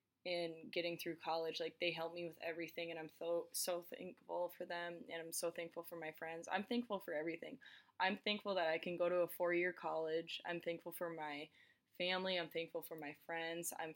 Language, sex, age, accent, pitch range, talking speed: English, female, 20-39, American, 165-185 Hz, 210 wpm